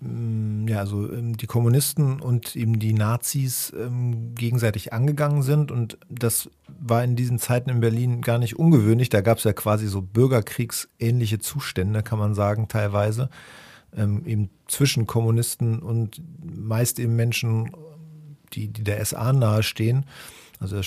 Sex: male